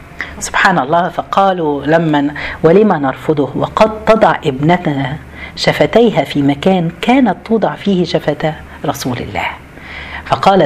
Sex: female